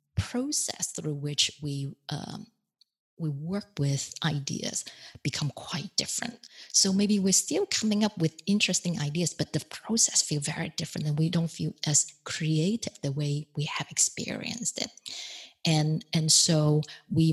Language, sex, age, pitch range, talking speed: English, female, 30-49, 145-180 Hz, 150 wpm